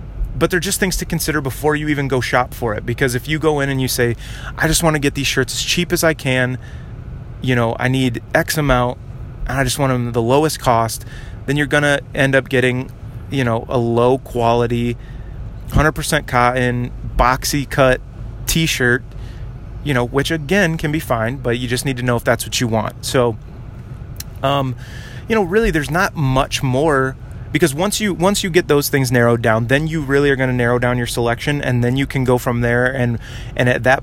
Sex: male